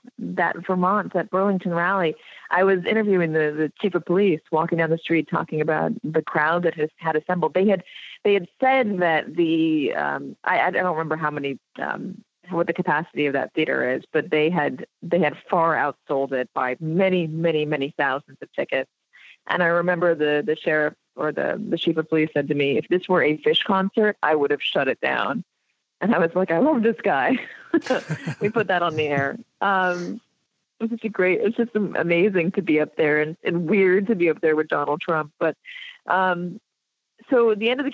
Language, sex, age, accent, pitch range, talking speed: English, female, 30-49, American, 155-195 Hz, 210 wpm